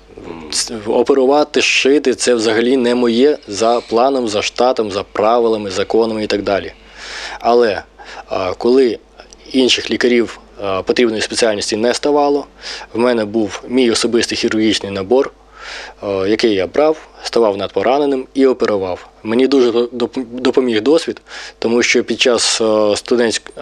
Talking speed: 125 wpm